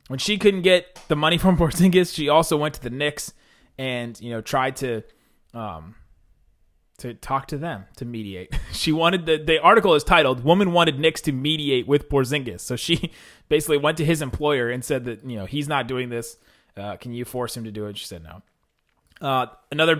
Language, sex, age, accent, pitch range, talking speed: English, male, 20-39, American, 115-155 Hz, 205 wpm